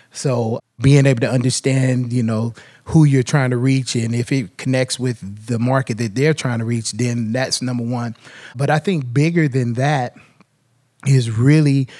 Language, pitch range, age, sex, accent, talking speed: English, 115-135 Hz, 20-39, male, American, 180 wpm